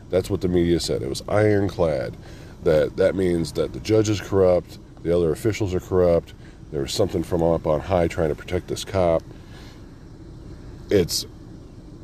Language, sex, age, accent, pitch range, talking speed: English, male, 40-59, American, 80-100 Hz, 170 wpm